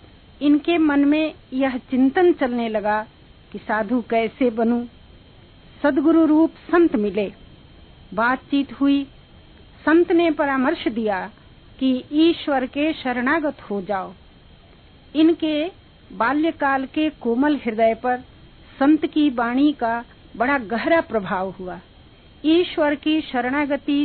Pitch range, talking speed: 240-305 Hz, 110 wpm